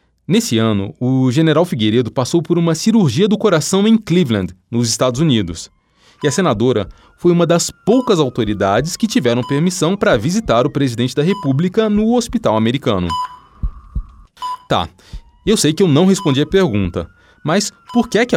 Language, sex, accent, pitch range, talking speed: Portuguese, male, Brazilian, 115-185 Hz, 160 wpm